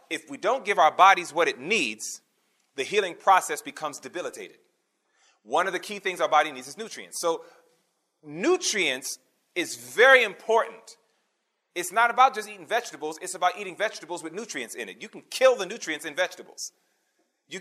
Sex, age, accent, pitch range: male, 30-49, American, 155-240 Hz